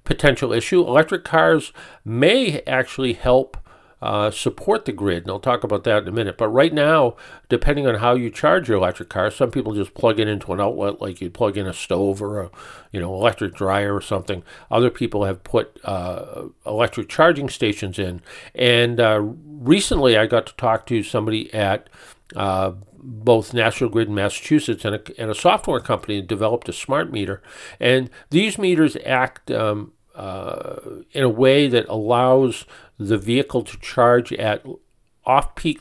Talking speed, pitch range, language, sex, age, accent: 175 wpm, 105-130 Hz, English, male, 50-69, American